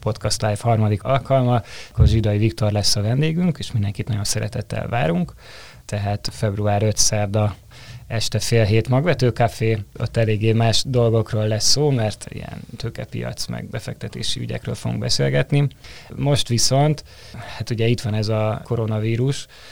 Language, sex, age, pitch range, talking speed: Hungarian, male, 20-39, 110-120 Hz, 135 wpm